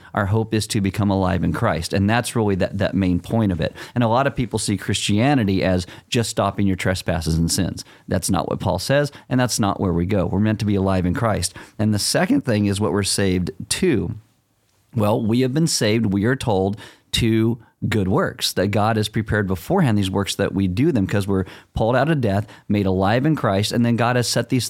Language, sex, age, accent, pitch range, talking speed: English, male, 40-59, American, 95-115 Hz, 235 wpm